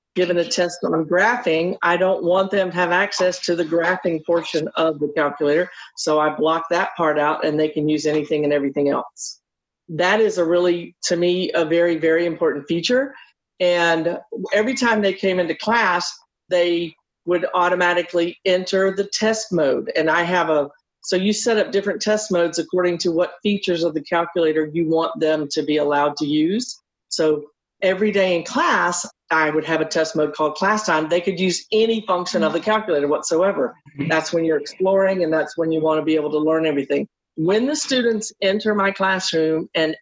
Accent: American